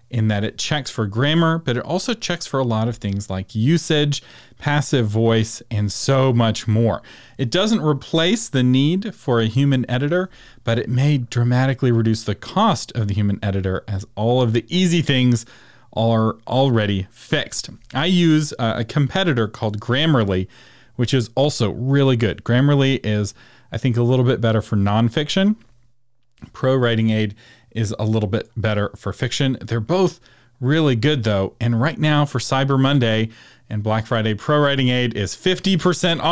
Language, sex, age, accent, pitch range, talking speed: English, male, 40-59, American, 110-140 Hz, 170 wpm